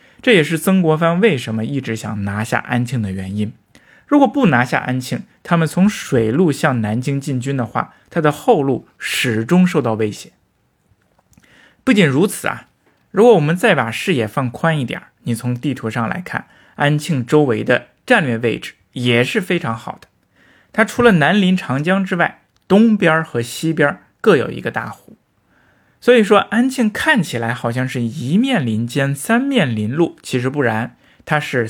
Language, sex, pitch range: Chinese, male, 120-185 Hz